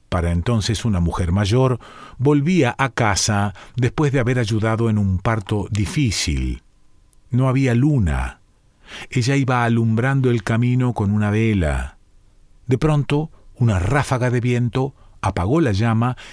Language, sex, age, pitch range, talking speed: Spanish, male, 40-59, 100-130 Hz, 130 wpm